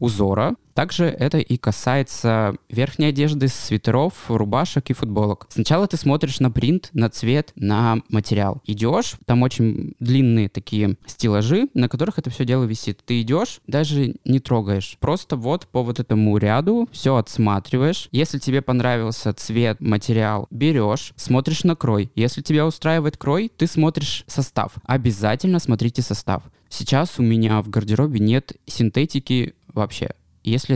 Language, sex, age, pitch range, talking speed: Russian, male, 20-39, 110-150 Hz, 140 wpm